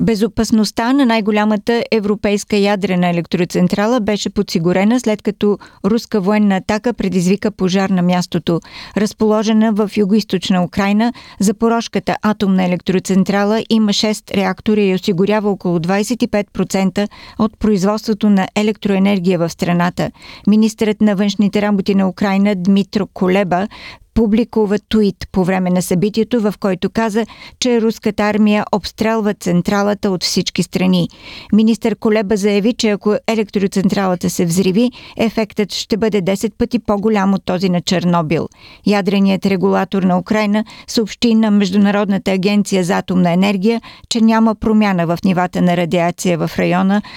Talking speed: 125 wpm